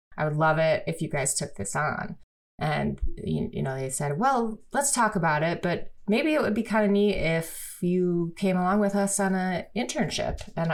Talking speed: 220 wpm